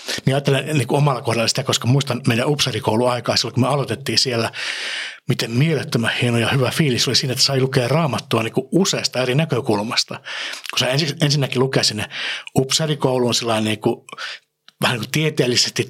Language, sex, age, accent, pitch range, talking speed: Finnish, male, 60-79, native, 115-135 Hz, 145 wpm